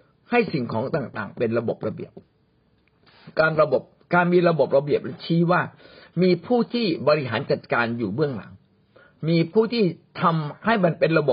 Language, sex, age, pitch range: Thai, male, 60-79, 140-190 Hz